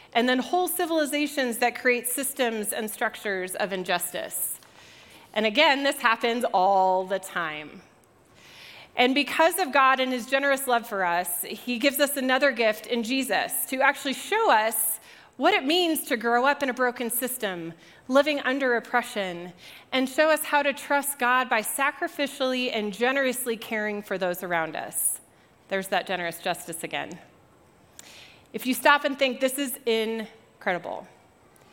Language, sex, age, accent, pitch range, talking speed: English, female, 30-49, American, 215-270 Hz, 155 wpm